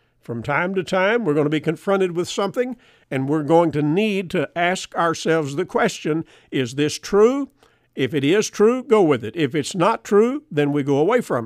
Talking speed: 210 wpm